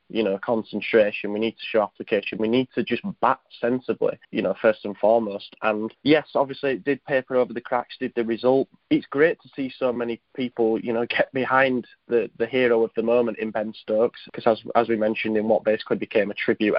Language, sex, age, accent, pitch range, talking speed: English, male, 20-39, British, 110-125 Hz, 220 wpm